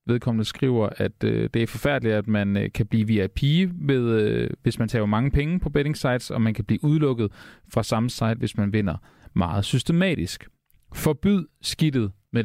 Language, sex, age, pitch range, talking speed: Danish, male, 30-49, 100-130 Hz, 170 wpm